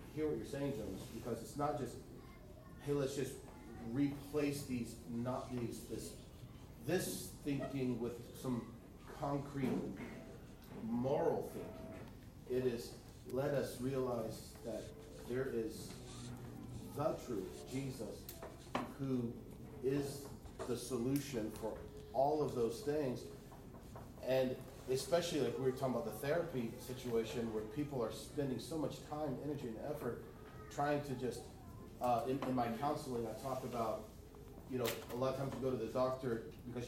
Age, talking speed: 40-59, 140 wpm